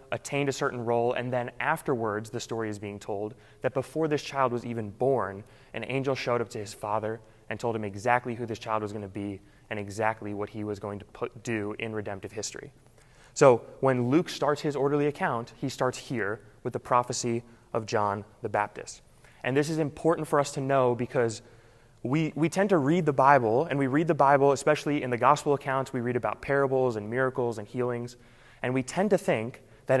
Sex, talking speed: male, 210 wpm